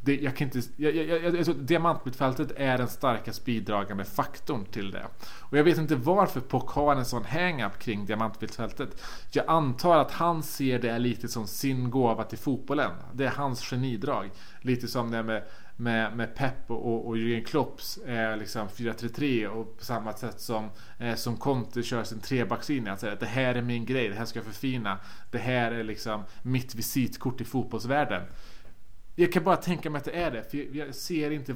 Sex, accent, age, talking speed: male, Norwegian, 30-49, 185 wpm